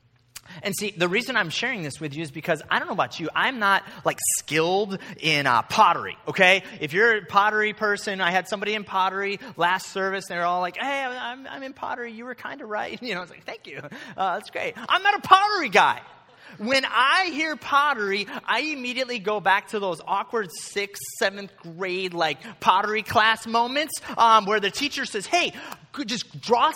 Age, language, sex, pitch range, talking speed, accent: 30-49, English, male, 195-280 Hz, 205 wpm, American